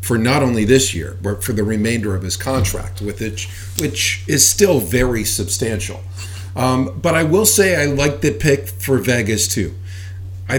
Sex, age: male, 50-69